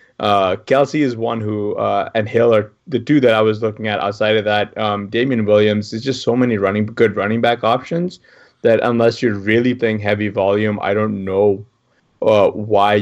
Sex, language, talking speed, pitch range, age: male, English, 200 wpm, 105-120 Hz, 20-39